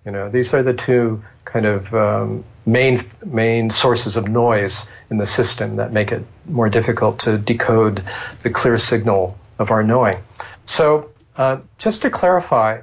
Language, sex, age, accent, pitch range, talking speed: English, male, 50-69, American, 105-125 Hz, 165 wpm